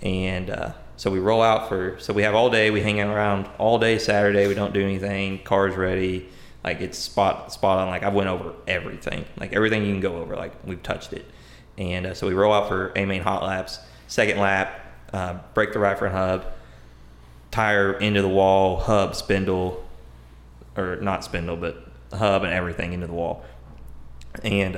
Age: 20-39